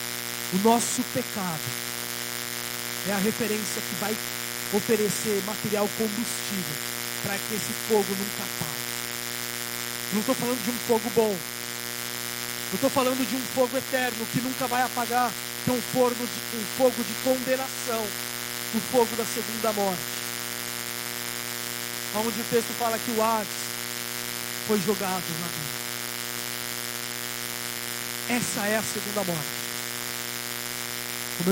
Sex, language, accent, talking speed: male, Portuguese, Brazilian, 125 wpm